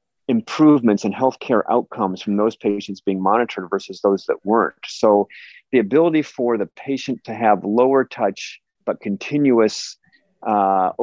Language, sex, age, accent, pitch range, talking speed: English, male, 40-59, American, 100-120 Hz, 140 wpm